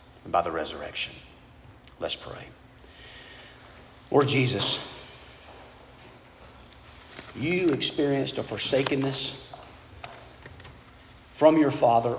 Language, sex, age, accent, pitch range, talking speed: English, male, 50-69, American, 120-150 Hz, 75 wpm